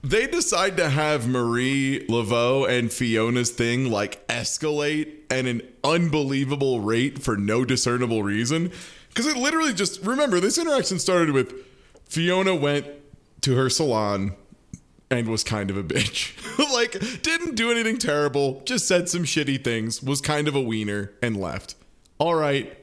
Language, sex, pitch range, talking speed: English, male, 115-160 Hz, 150 wpm